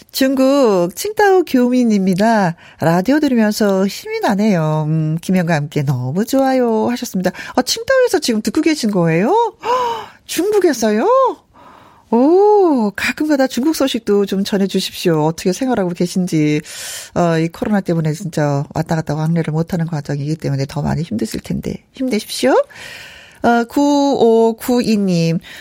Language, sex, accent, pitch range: Korean, female, native, 170-265 Hz